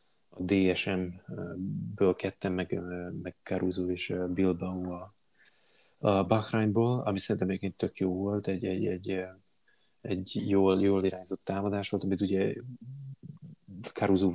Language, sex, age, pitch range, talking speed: Hungarian, male, 20-39, 90-100 Hz, 115 wpm